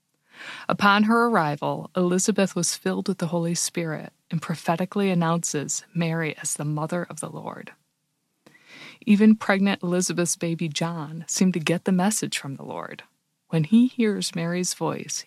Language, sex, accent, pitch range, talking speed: English, female, American, 155-190 Hz, 150 wpm